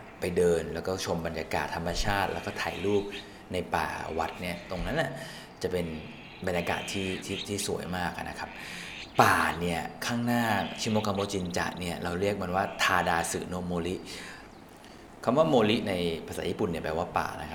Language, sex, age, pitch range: Thai, male, 20-39, 85-105 Hz